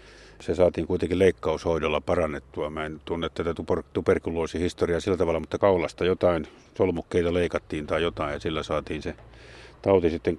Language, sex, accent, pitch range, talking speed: Finnish, male, native, 85-105 Hz, 145 wpm